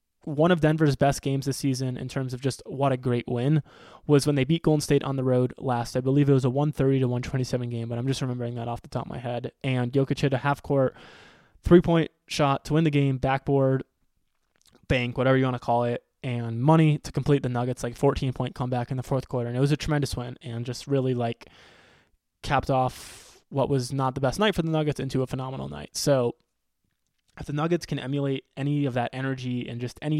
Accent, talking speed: American, 230 wpm